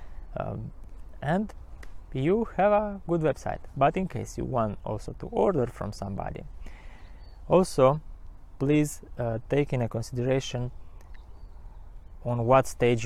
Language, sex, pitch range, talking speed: English, male, 110-150 Hz, 120 wpm